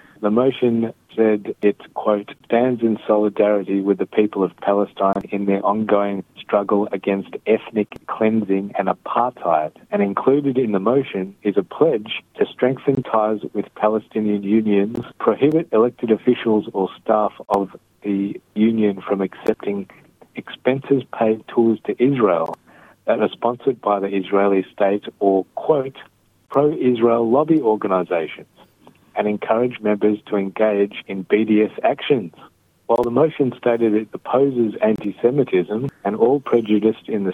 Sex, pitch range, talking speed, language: male, 100-115 Hz, 135 wpm, Hebrew